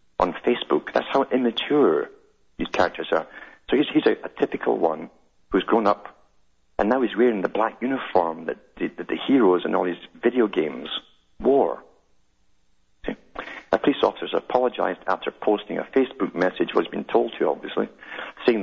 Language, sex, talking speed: English, male, 170 wpm